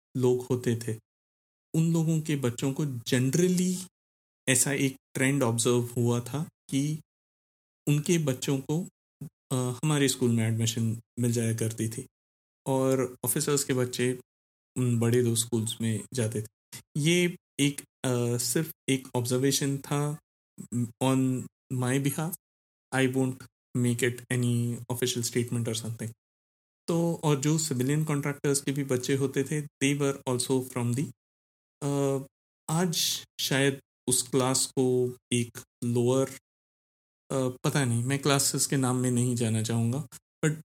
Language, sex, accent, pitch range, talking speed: Hindi, male, native, 120-140 Hz, 135 wpm